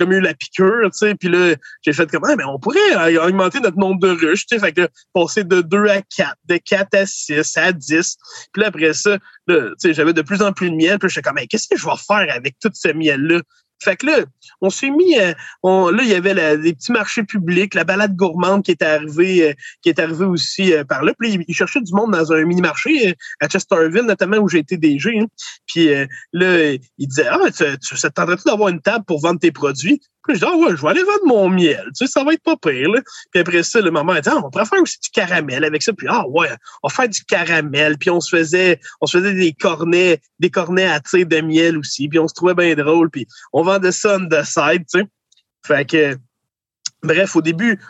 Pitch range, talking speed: 165-215 Hz, 245 wpm